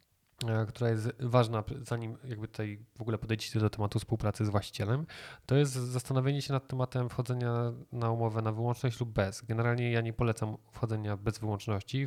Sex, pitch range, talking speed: male, 110-125 Hz, 170 wpm